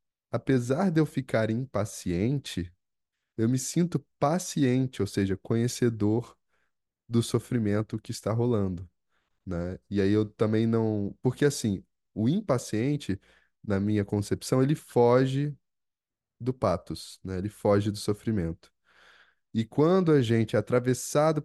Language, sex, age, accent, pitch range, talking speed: Portuguese, male, 10-29, Brazilian, 105-140 Hz, 125 wpm